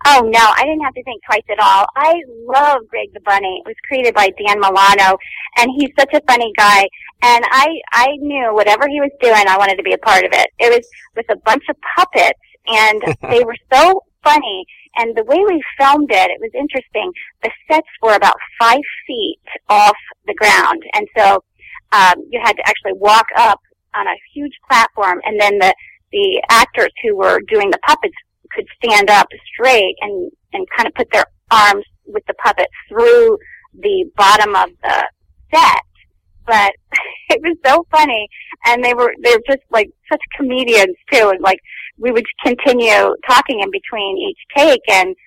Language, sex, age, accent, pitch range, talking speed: English, female, 30-49, American, 215-350 Hz, 185 wpm